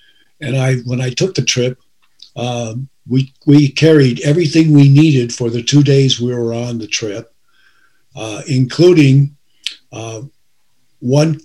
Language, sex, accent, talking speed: English, male, American, 140 wpm